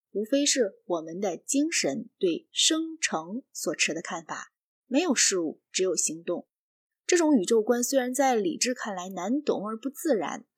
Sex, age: female, 20-39